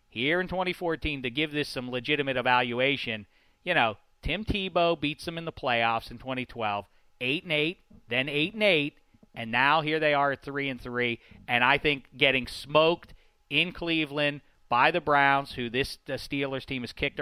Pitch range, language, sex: 125-165 Hz, English, male